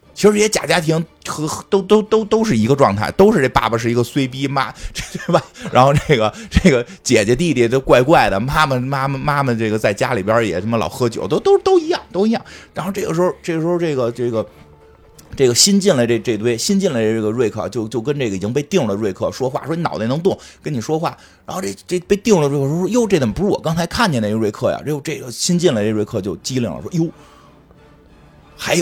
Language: Chinese